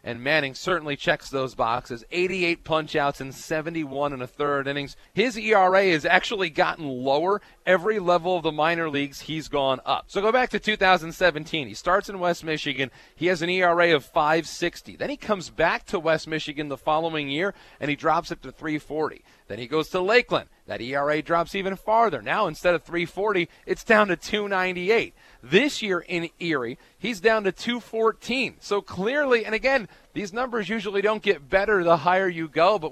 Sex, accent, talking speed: male, American, 185 wpm